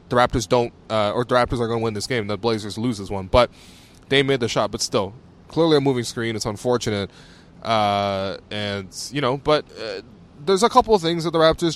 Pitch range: 105-135 Hz